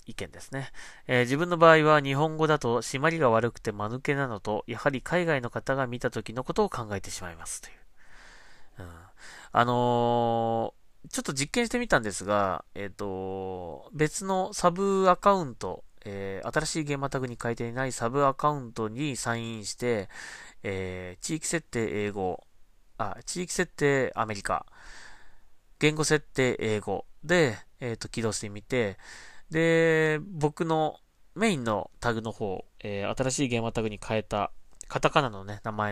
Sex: male